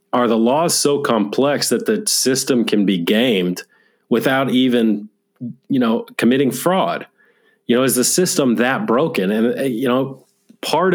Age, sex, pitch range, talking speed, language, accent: 40-59, male, 115-165 Hz, 155 wpm, English, American